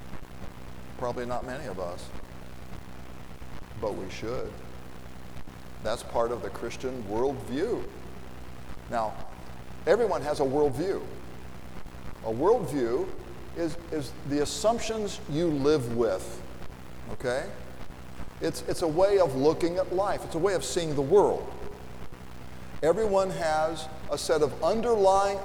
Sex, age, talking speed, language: male, 50-69, 120 wpm, English